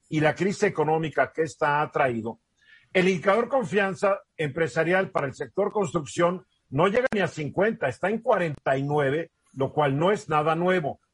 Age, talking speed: 50-69, 160 wpm